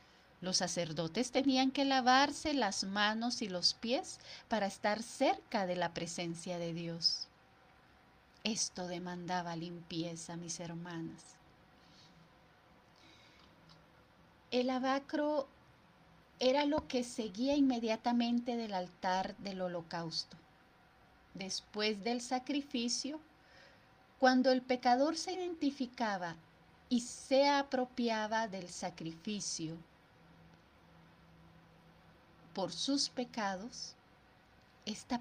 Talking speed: 85 wpm